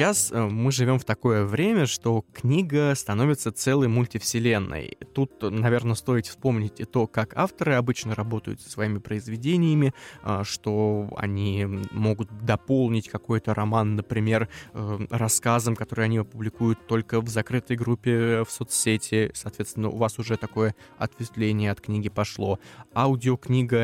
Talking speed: 130 wpm